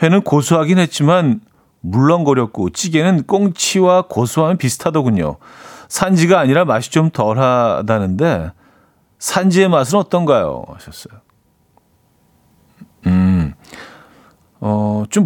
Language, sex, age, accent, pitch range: Korean, male, 40-59, native, 110-170 Hz